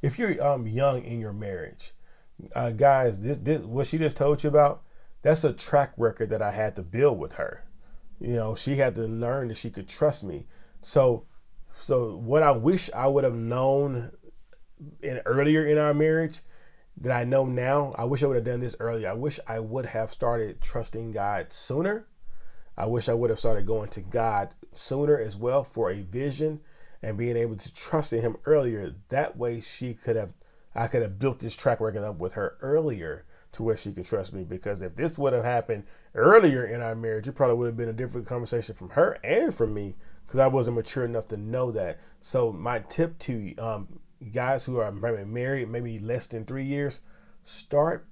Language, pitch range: English, 110-140 Hz